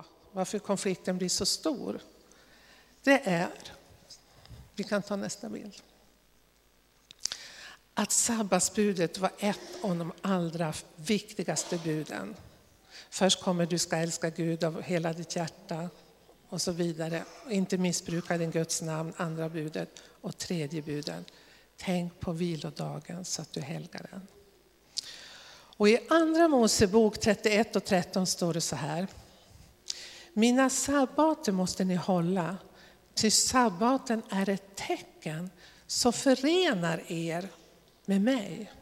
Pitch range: 165-210 Hz